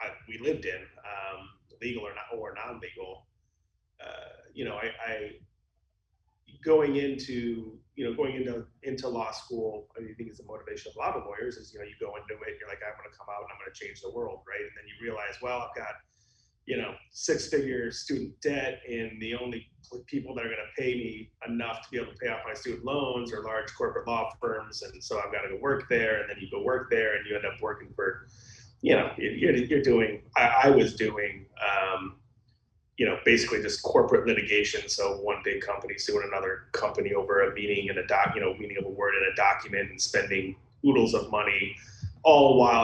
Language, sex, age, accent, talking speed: English, male, 30-49, American, 225 wpm